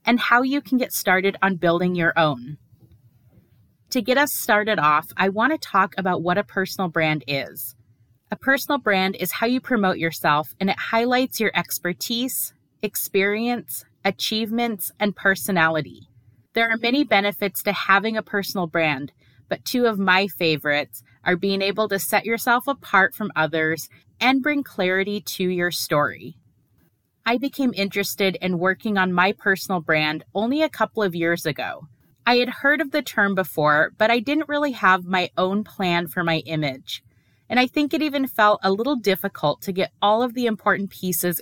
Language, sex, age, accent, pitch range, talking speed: English, female, 30-49, American, 155-225 Hz, 170 wpm